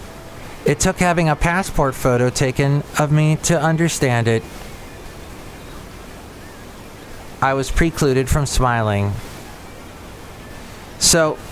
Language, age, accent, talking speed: English, 30-49, American, 95 wpm